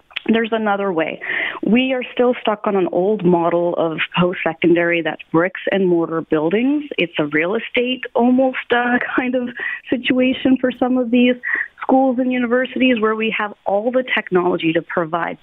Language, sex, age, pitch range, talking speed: English, female, 30-49, 170-240 Hz, 165 wpm